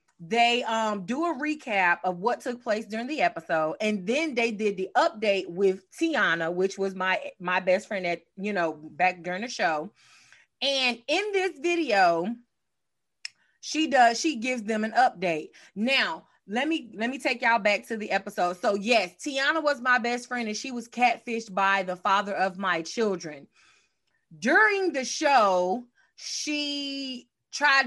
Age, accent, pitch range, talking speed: 30-49, American, 190-255 Hz, 165 wpm